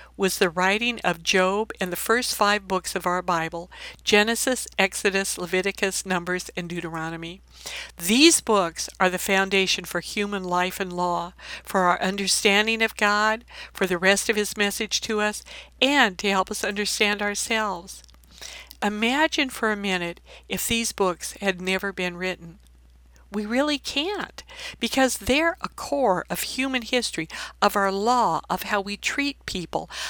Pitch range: 180-230 Hz